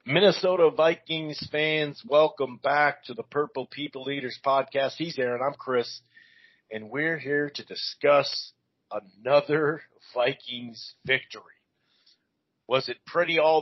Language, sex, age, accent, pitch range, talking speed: English, male, 40-59, American, 125-155 Hz, 120 wpm